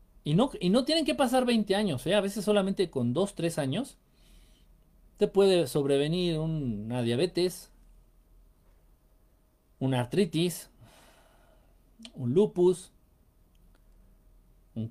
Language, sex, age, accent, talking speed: Spanish, male, 50-69, Mexican, 110 wpm